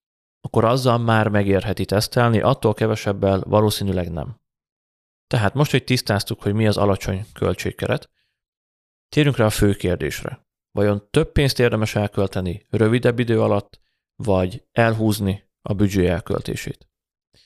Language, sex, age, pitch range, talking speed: Hungarian, male, 30-49, 100-115 Hz, 120 wpm